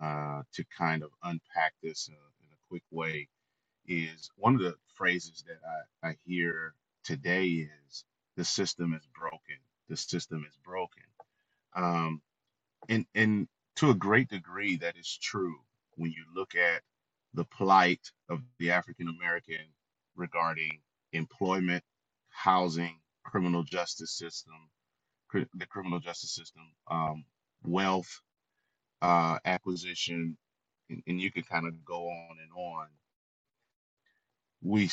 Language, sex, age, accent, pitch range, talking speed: English, male, 30-49, American, 80-95 Hz, 125 wpm